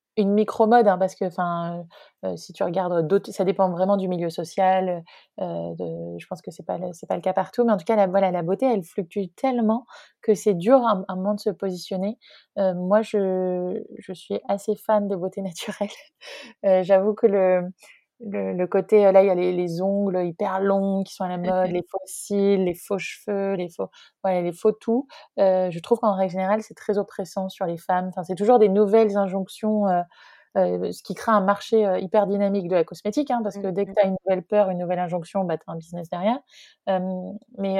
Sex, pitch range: female, 180-210 Hz